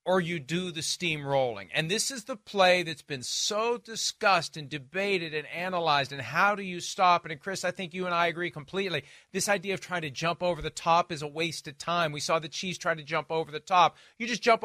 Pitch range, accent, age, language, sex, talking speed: 165-225 Hz, American, 40-59, English, male, 245 wpm